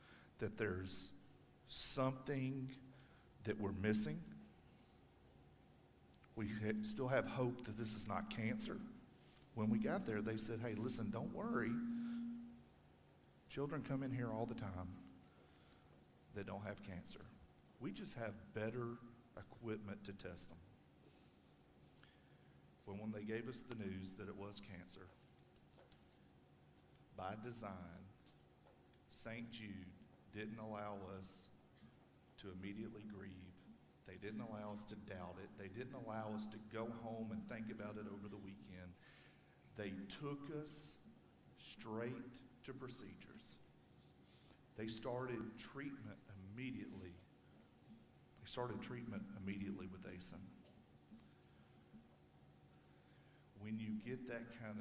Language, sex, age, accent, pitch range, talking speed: English, male, 50-69, American, 90-115 Hz, 115 wpm